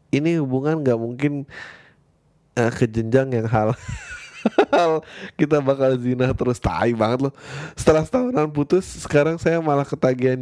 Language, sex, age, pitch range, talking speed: Indonesian, male, 20-39, 125-175 Hz, 130 wpm